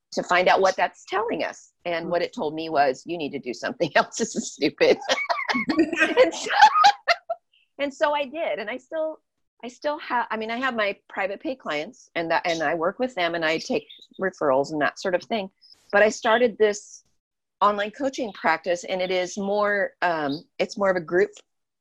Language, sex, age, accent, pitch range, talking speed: English, female, 40-59, American, 170-255 Hz, 200 wpm